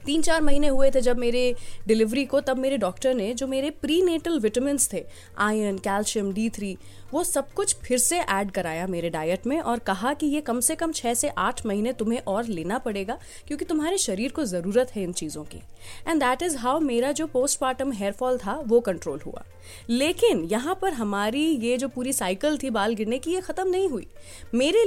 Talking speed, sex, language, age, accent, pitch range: 205 wpm, female, Hindi, 20-39, native, 210-300 Hz